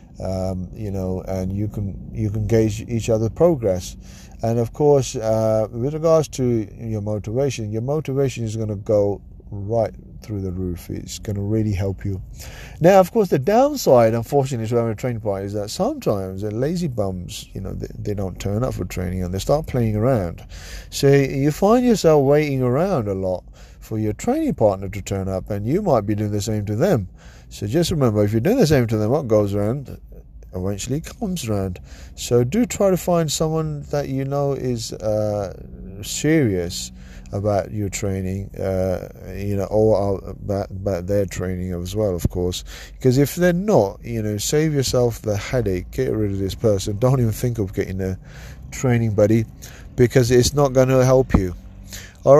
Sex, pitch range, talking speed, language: male, 95-135 Hz, 190 wpm, English